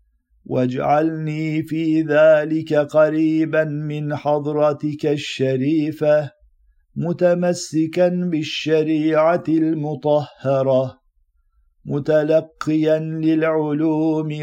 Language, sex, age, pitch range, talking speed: Turkish, male, 50-69, 145-160 Hz, 50 wpm